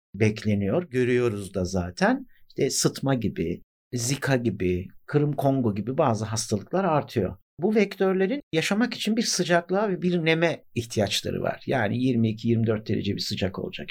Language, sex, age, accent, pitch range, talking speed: Turkish, male, 50-69, native, 110-160 Hz, 140 wpm